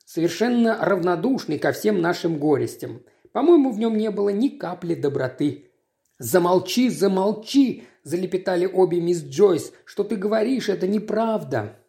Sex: male